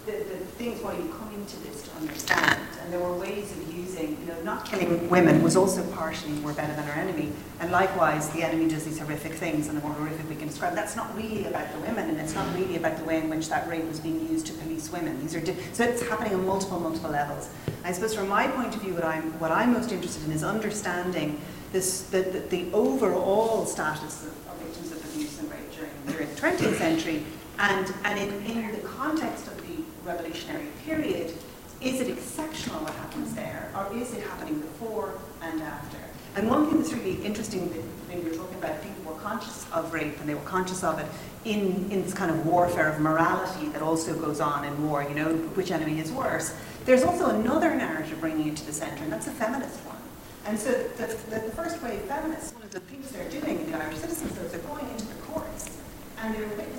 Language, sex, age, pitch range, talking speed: English, female, 40-59, 160-220 Hz, 220 wpm